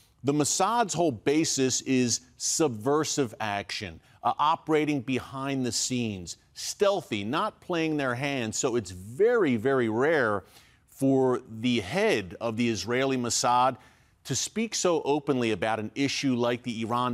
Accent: American